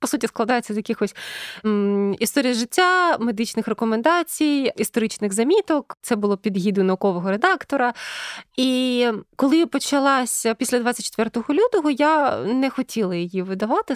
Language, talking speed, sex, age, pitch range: Ukrainian, 115 wpm, female, 20-39, 210-270 Hz